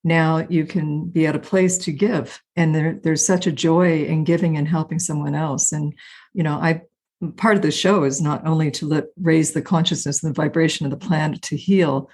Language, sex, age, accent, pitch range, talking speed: English, female, 50-69, American, 155-195 Hz, 220 wpm